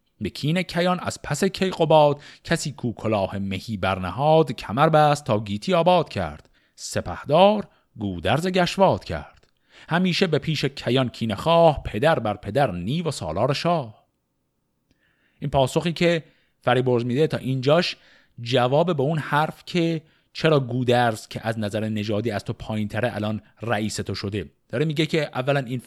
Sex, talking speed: male, 140 wpm